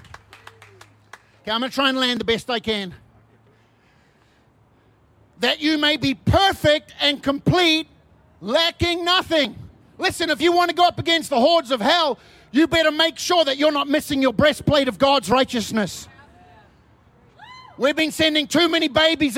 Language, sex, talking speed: English, male, 160 wpm